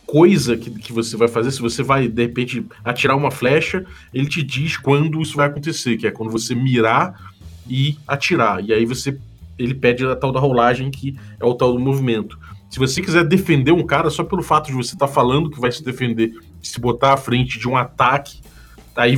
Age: 20-39